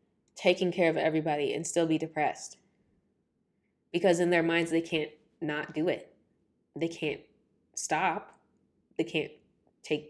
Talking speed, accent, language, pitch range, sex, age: 135 wpm, American, English, 150-180 Hz, female, 10-29